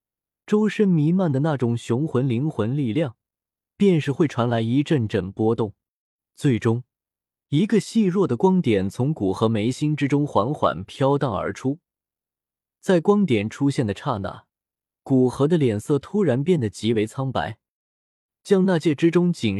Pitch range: 115-180 Hz